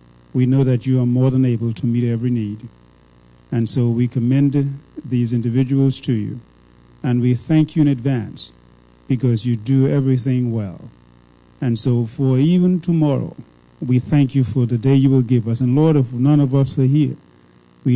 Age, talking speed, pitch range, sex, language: 50-69, 185 wpm, 115-135 Hz, male, English